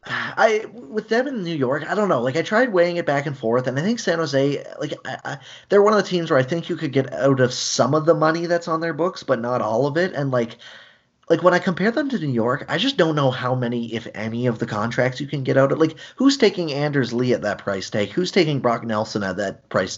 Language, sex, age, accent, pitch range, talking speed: English, male, 20-39, American, 120-160 Hz, 280 wpm